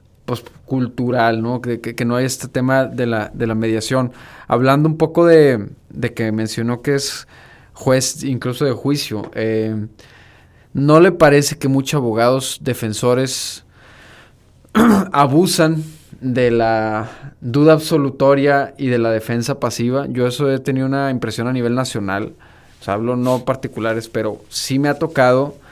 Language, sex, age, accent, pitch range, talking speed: Spanish, male, 20-39, Mexican, 115-135 Hz, 150 wpm